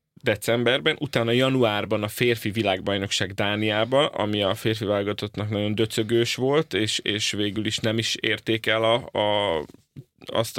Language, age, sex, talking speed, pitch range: Hungarian, 30-49, male, 140 wpm, 110-130 Hz